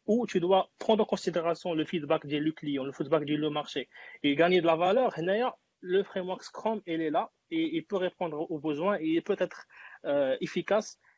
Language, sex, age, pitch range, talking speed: Arabic, male, 30-49, 155-195 Hz, 195 wpm